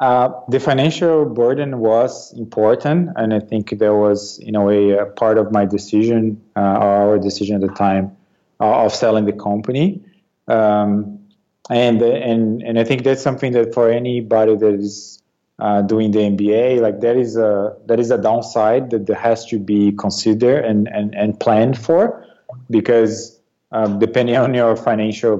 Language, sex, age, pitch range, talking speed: English, male, 20-39, 105-125 Hz, 170 wpm